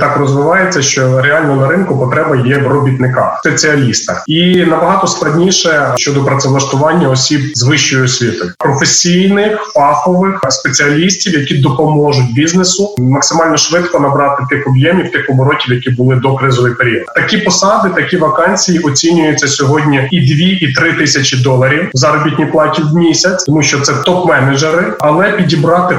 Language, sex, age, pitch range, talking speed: Ukrainian, male, 20-39, 135-165 Hz, 140 wpm